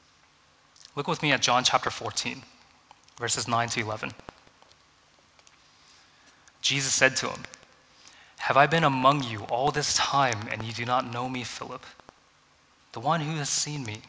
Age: 20-39